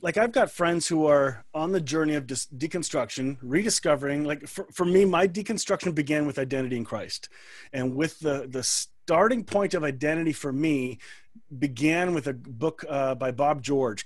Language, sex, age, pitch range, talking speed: English, male, 30-49, 135-170 Hz, 180 wpm